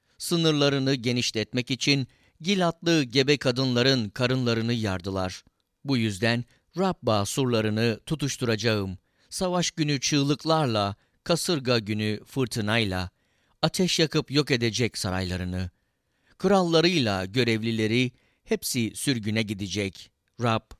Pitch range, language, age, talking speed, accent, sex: 100-140 Hz, Turkish, 50-69, 85 wpm, native, male